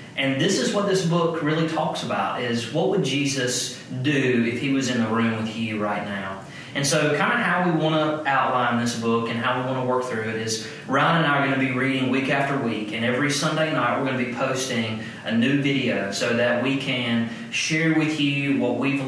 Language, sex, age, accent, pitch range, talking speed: English, male, 30-49, American, 125-155 Hz, 240 wpm